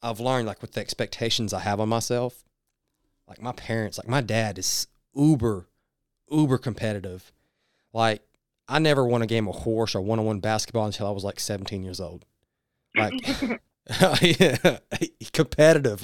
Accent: American